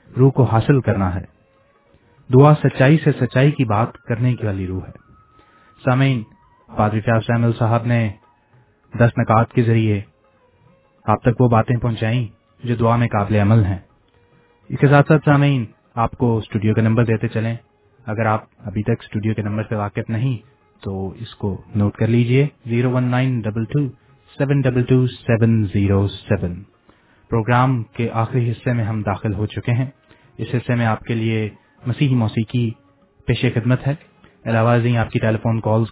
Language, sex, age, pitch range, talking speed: English, male, 30-49, 105-125 Hz, 140 wpm